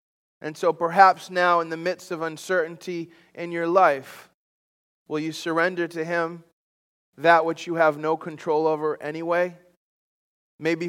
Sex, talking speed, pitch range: male, 145 wpm, 150-175 Hz